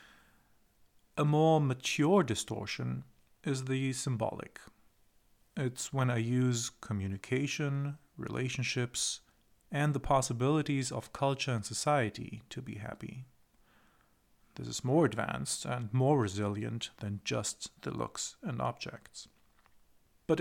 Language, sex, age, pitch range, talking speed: English, male, 40-59, 110-145 Hz, 110 wpm